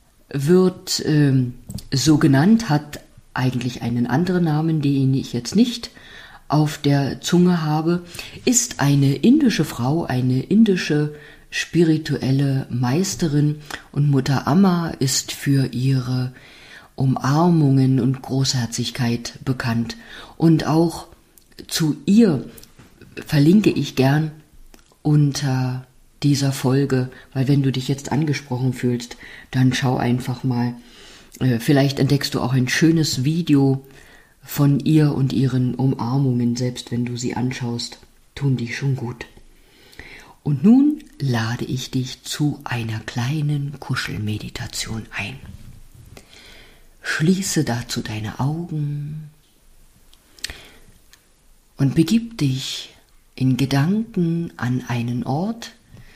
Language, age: German, 50-69